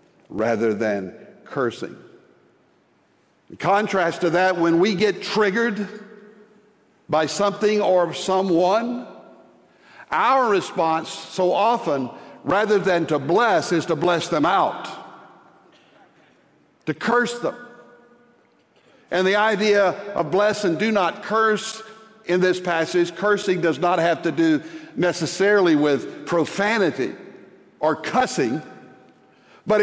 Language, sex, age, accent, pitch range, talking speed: English, male, 60-79, American, 175-220 Hz, 110 wpm